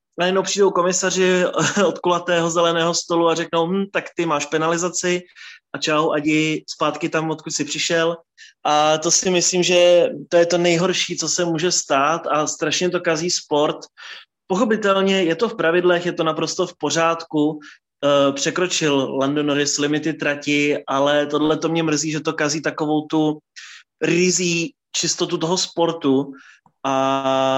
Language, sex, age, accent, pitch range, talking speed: Czech, male, 20-39, native, 150-175 Hz, 150 wpm